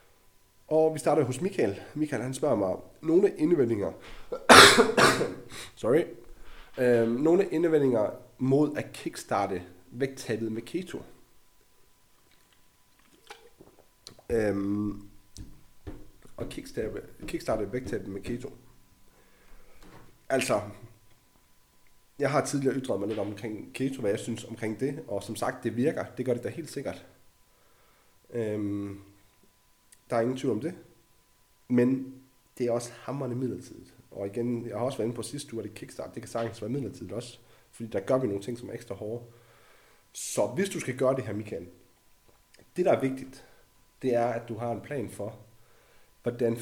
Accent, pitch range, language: native, 110-135 Hz, Danish